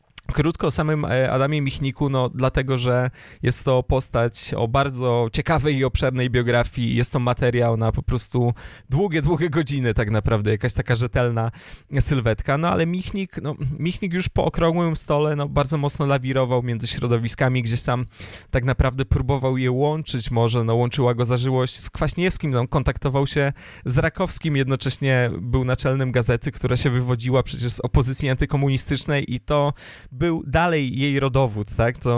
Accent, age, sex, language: native, 20-39, male, Polish